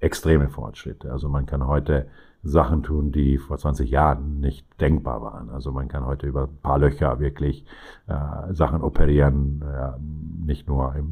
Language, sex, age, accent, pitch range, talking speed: German, male, 50-69, German, 70-85 Hz, 165 wpm